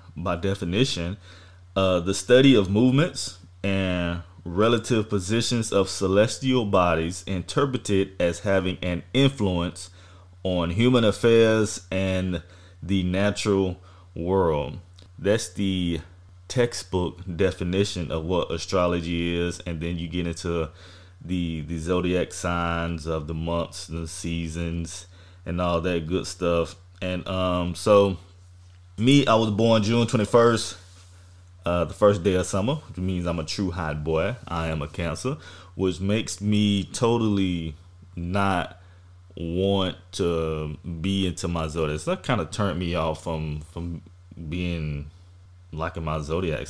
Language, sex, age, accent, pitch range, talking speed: English, male, 20-39, American, 85-95 Hz, 130 wpm